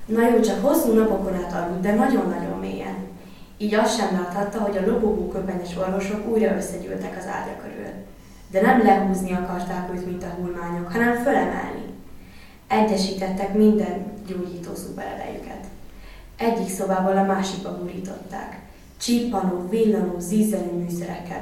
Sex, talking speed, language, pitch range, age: female, 130 wpm, Hungarian, 180-210 Hz, 20-39